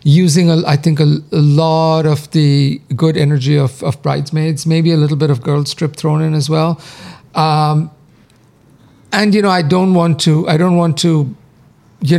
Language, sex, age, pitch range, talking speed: English, male, 50-69, 145-165 Hz, 175 wpm